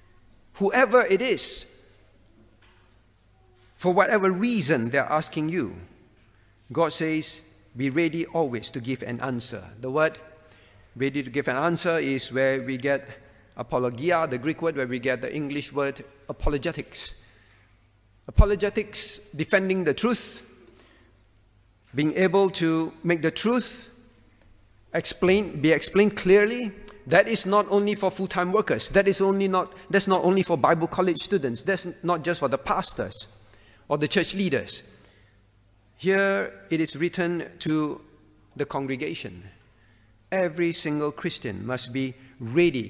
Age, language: 50-69, English